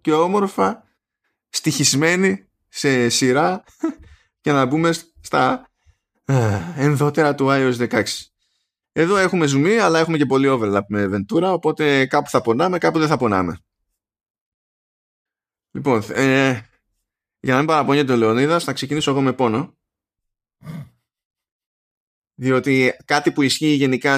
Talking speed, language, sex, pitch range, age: 125 wpm, Greek, male, 110-155 Hz, 20-39